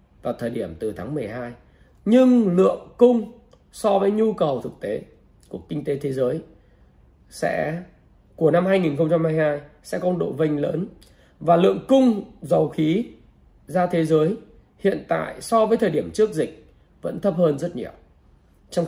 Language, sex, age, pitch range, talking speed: Vietnamese, male, 20-39, 155-200 Hz, 160 wpm